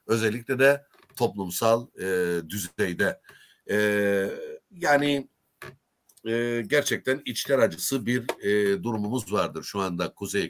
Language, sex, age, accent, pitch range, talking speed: Turkish, male, 60-79, native, 100-135 Hz, 105 wpm